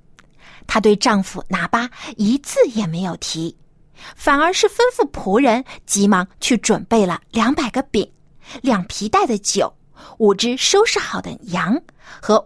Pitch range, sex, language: 180-290 Hz, female, Chinese